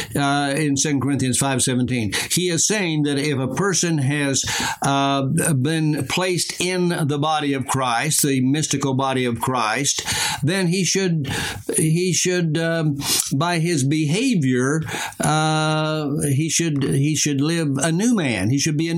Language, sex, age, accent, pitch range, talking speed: English, male, 60-79, American, 135-165 Hz, 155 wpm